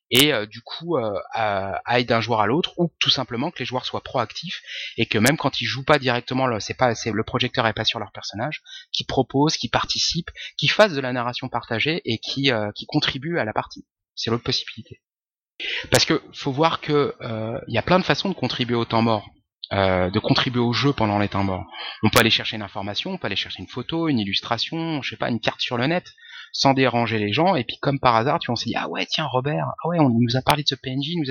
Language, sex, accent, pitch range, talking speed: French, male, French, 115-150 Hz, 255 wpm